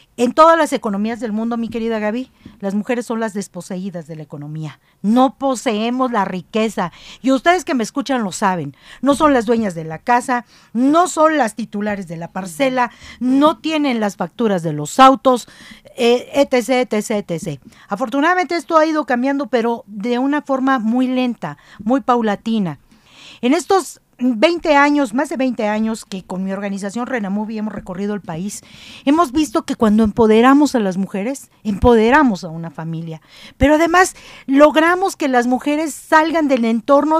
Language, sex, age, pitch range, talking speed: Spanish, female, 50-69, 210-275 Hz, 165 wpm